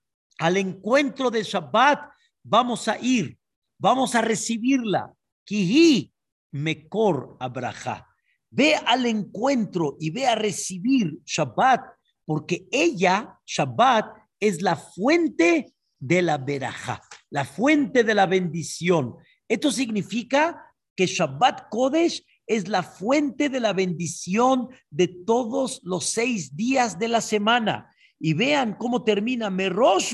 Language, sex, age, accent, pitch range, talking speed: Spanish, male, 50-69, Mexican, 185-250 Hz, 110 wpm